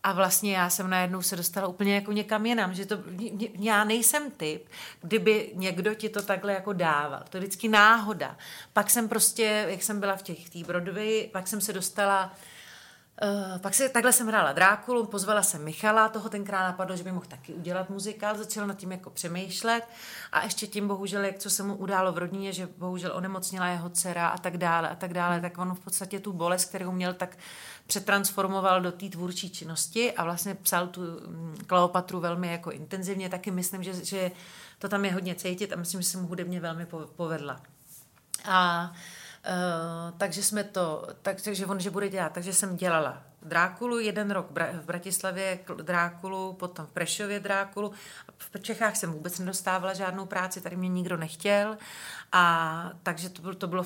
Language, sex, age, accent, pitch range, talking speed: Czech, female, 40-59, native, 175-200 Hz, 185 wpm